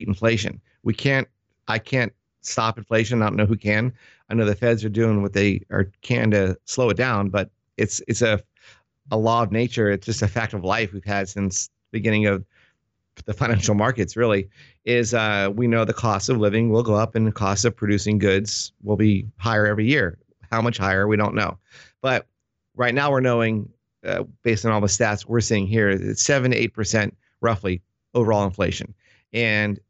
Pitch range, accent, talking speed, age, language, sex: 100-120 Hz, American, 205 wpm, 50-69, English, male